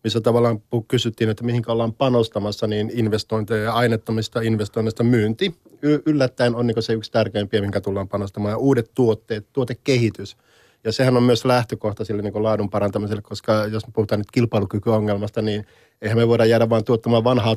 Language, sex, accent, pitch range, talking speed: Finnish, male, native, 110-125 Hz, 175 wpm